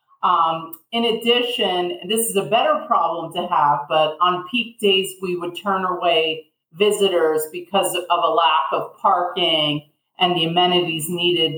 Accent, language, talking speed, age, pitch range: American, English, 150 wpm, 40-59, 170-220 Hz